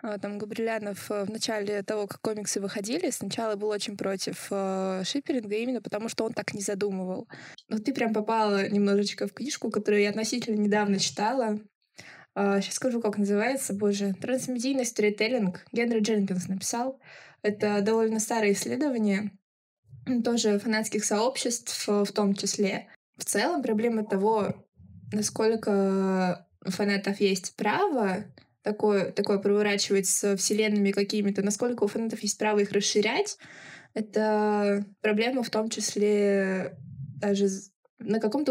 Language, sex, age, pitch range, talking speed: Russian, female, 20-39, 200-225 Hz, 130 wpm